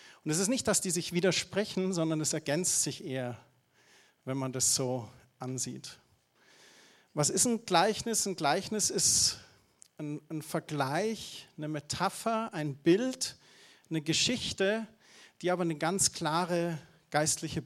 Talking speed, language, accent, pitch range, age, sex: 135 wpm, German, German, 150-195 Hz, 40-59, male